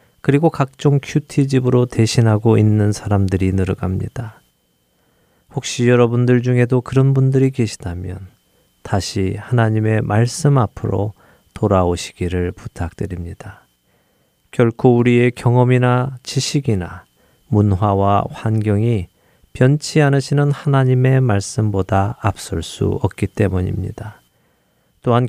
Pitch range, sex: 100-130 Hz, male